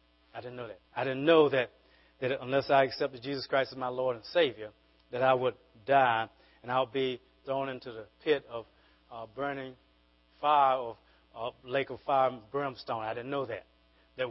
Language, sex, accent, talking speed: English, male, American, 195 wpm